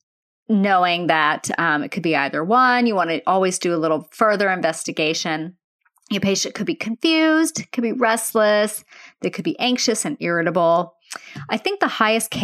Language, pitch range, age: English, 170-225 Hz, 30-49